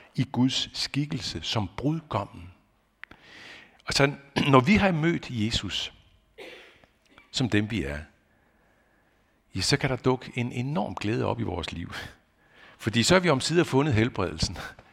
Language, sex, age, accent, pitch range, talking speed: Danish, male, 60-79, native, 100-140 Hz, 140 wpm